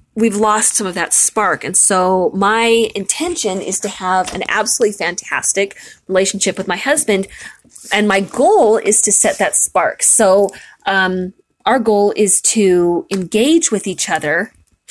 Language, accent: English, American